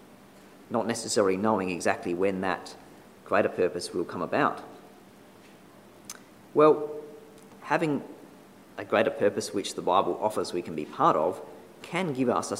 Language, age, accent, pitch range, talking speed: English, 40-59, Australian, 105-145 Hz, 140 wpm